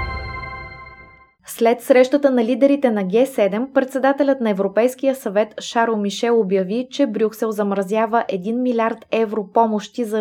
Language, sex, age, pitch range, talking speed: Bulgarian, female, 20-39, 195-235 Hz, 125 wpm